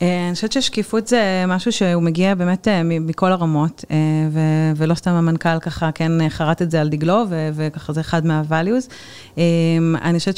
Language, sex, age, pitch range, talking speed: Hebrew, female, 30-49, 165-185 Hz, 150 wpm